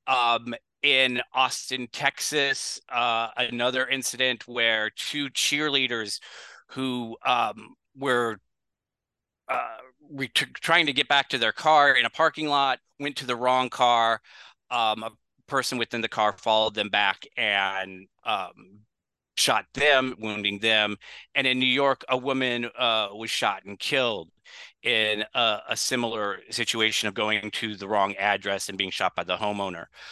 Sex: male